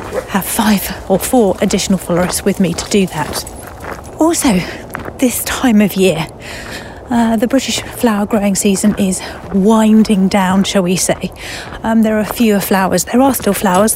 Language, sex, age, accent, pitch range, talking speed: English, female, 40-59, British, 195-225 Hz, 160 wpm